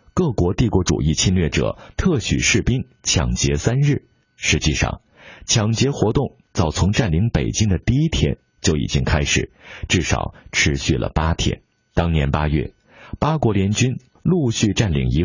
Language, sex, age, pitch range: Chinese, male, 50-69, 80-115 Hz